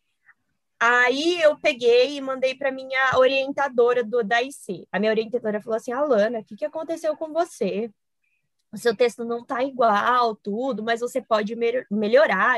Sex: female